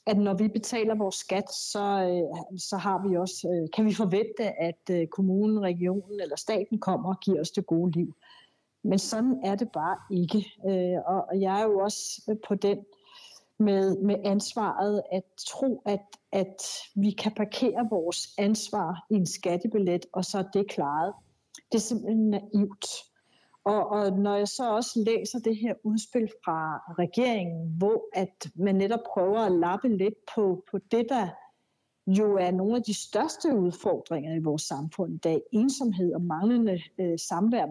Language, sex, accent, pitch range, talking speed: Danish, female, native, 185-220 Hz, 160 wpm